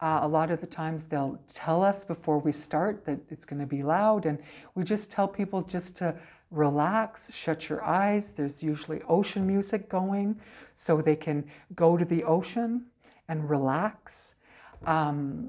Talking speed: 170 wpm